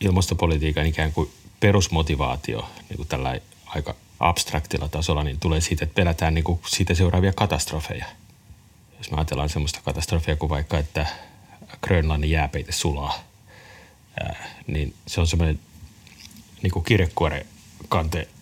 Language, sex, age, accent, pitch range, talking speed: Finnish, male, 30-49, native, 80-105 Hz, 120 wpm